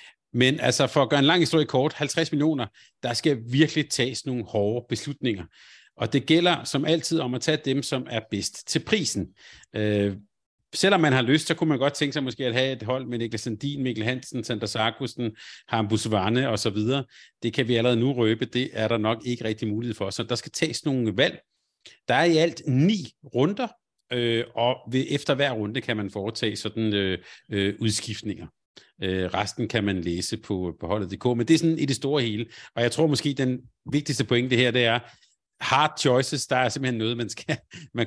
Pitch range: 110-140 Hz